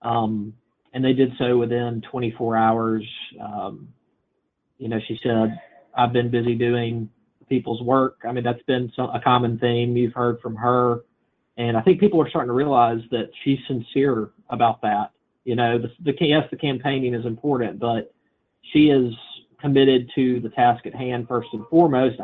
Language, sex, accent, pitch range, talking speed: English, male, American, 115-130 Hz, 180 wpm